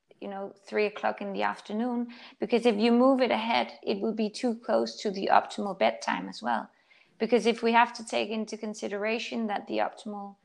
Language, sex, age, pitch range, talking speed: English, female, 20-39, 205-230 Hz, 200 wpm